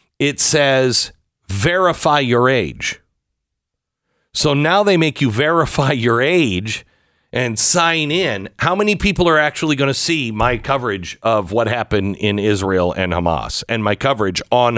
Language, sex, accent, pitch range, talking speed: English, male, American, 90-130 Hz, 150 wpm